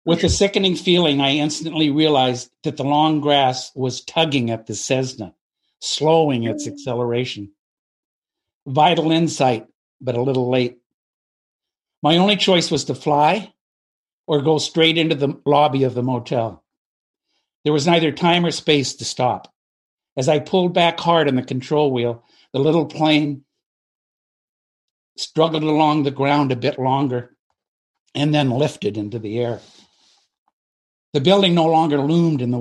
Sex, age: male, 60-79